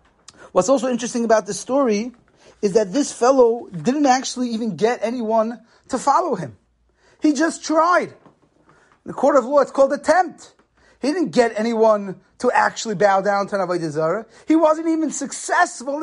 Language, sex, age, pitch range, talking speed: English, male, 30-49, 220-275 Hz, 165 wpm